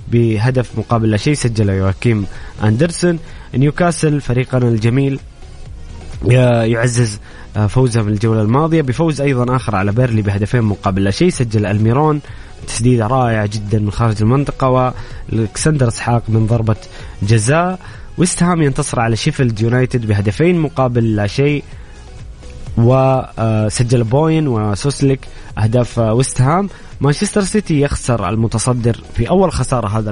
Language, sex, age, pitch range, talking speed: English, male, 20-39, 110-140 Hz, 120 wpm